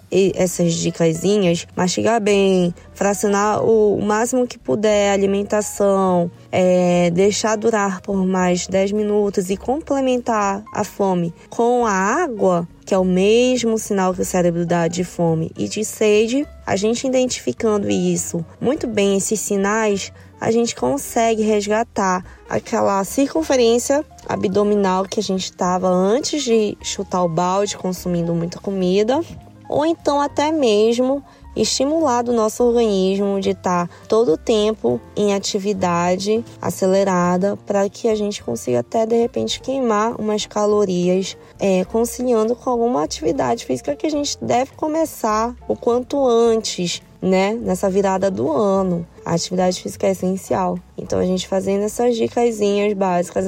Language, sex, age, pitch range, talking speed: Portuguese, female, 20-39, 185-225 Hz, 140 wpm